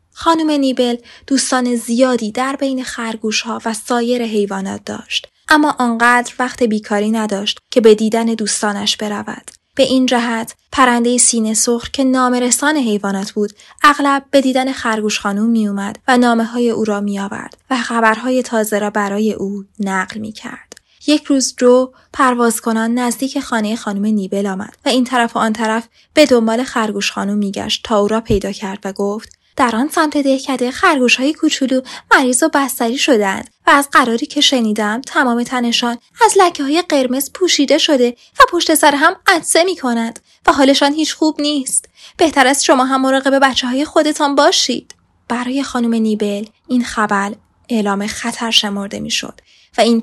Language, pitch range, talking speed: Persian, 215-270 Hz, 165 wpm